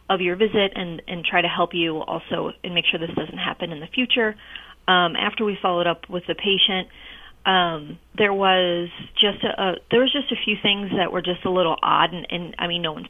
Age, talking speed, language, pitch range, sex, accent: 30-49, 235 wpm, English, 175-220 Hz, female, American